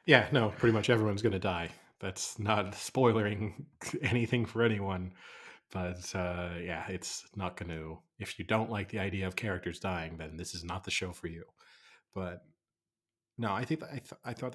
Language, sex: English, male